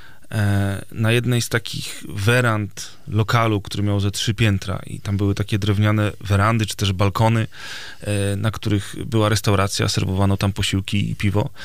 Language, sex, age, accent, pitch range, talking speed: Polish, male, 30-49, native, 105-125 Hz, 150 wpm